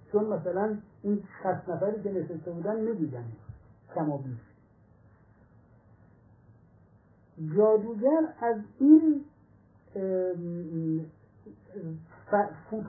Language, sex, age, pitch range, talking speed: Persian, male, 60-79, 150-205 Hz, 65 wpm